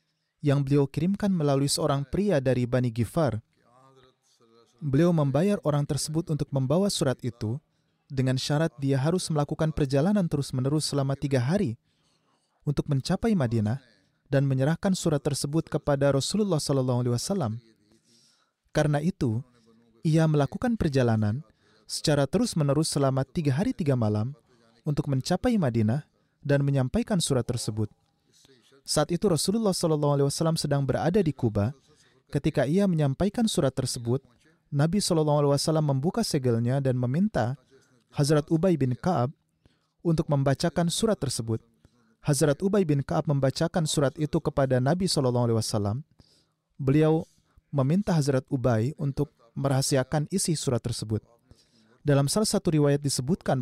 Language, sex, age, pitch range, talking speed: Indonesian, male, 30-49, 130-160 Hz, 120 wpm